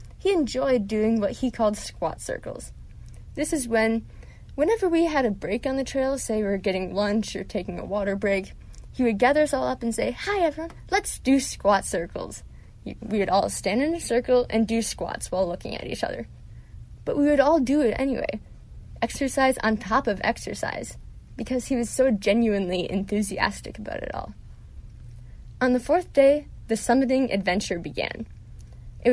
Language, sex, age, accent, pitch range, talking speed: English, female, 20-39, American, 205-270 Hz, 180 wpm